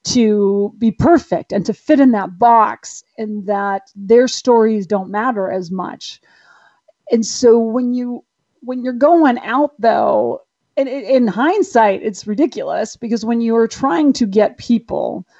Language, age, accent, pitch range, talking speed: English, 40-59, American, 200-250 Hz, 155 wpm